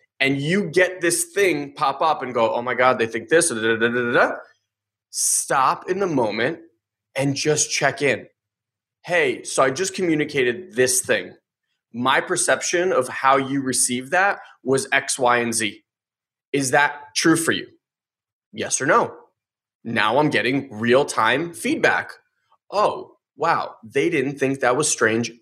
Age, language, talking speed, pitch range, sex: 20-39, English, 165 wpm, 120-155 Hz, male